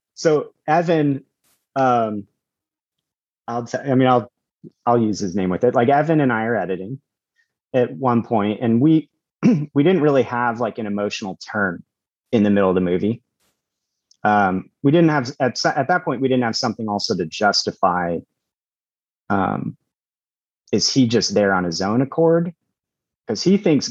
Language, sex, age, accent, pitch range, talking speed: English, male, 30-49, American, 115-150 Hz, 165 wpm